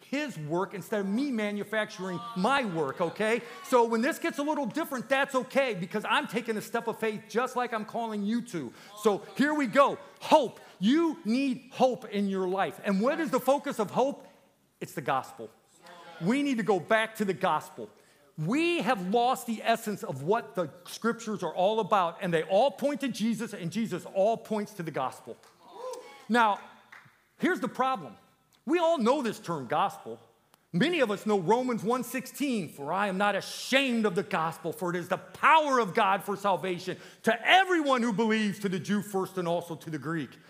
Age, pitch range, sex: 40-59, 175-255 Hz, male